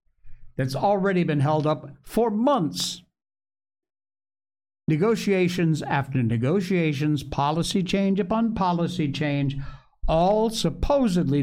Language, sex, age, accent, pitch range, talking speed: English, male, 60-79, American, 125-195 Hz, 90 wpm